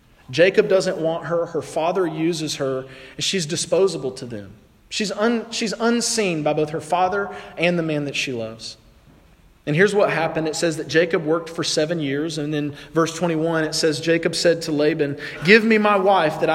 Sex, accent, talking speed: male, American, 195 wpm